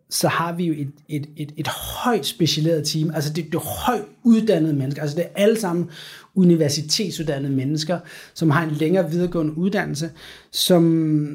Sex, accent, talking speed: male, Danish, 170 wpm